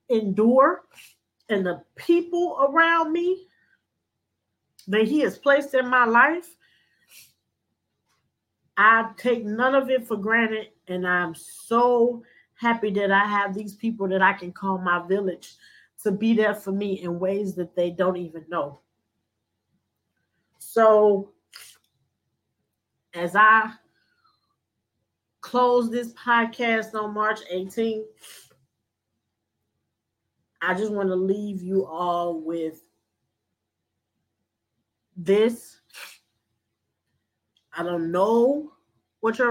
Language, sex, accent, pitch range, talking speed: English, female, American, 175-230 Hz, 105 wpm